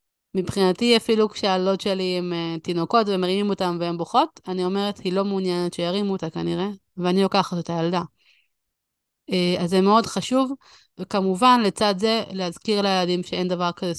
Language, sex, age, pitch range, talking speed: Hebrew, female, 30-49, 175-205 Hz, 145 wpm